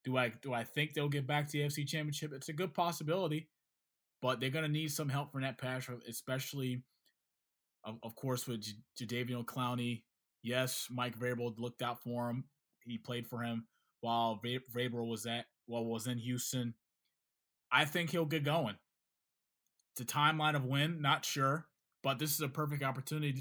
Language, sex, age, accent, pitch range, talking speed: English, male, 20-39, American, 125-150 Hz, 180 wpm